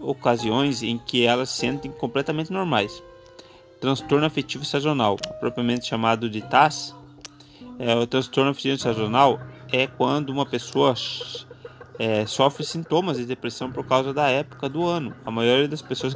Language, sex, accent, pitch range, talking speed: Portuguese, male, Brazilian, 120-145 Hz, 145 wpm